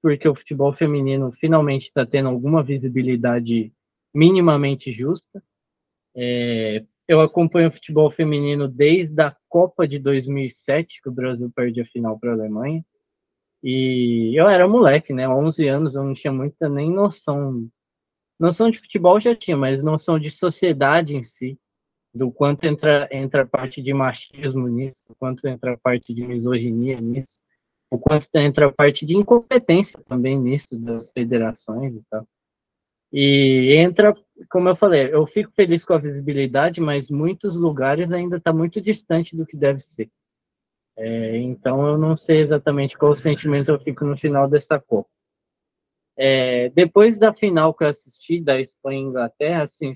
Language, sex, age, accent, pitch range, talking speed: English, male, 20-39, Brazilian, 130-160 Hz, 160 wpm